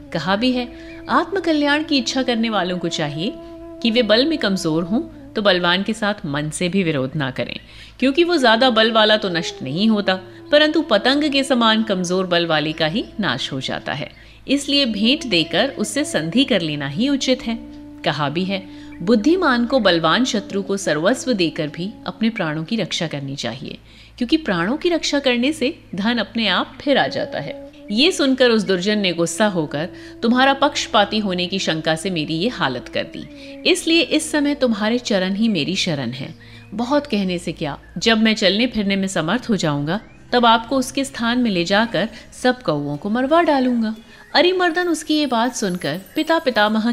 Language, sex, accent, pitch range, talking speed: Hindi, female, native, 170-265 Hz, 140 wpm